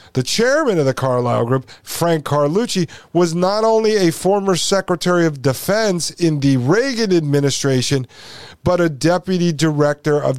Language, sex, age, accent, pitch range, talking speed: English, male, 50-69, American, 125-170 Hz, 145 wpm